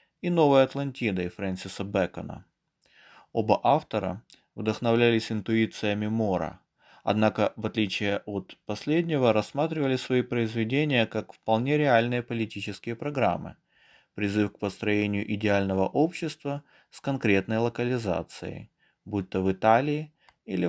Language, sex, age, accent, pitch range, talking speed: Russian, male, 20-39, native, 100-125 Hz, 105 wpm